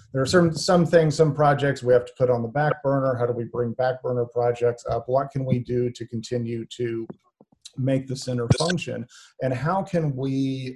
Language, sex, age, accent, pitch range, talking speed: English, male, 40-59, American, 120-135 Hz, 205 wpm